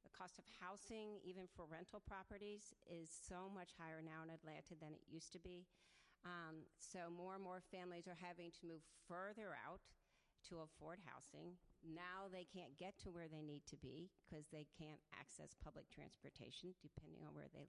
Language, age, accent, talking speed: English, 50-69, American, 185 wpm